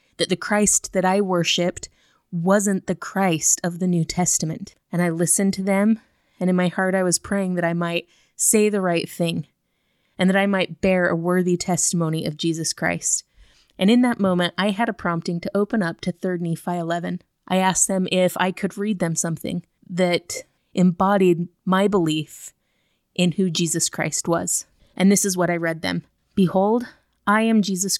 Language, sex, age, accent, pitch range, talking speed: English, female, 20-39, American, 170-200 Hz, 185 wpm